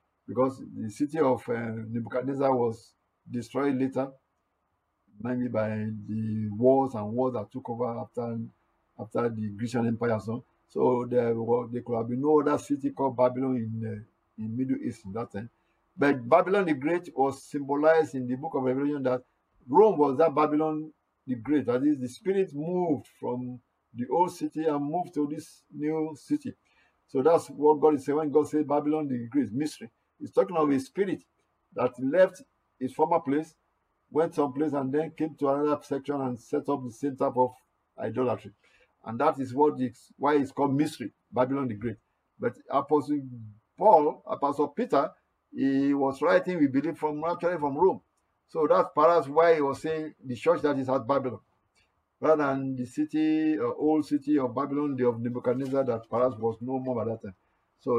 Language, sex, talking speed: English, male, 180 wpm